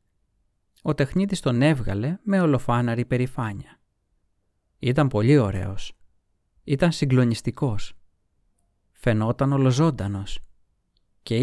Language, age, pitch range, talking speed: Greek, 30-49, 100-150 Hz, 80 wpm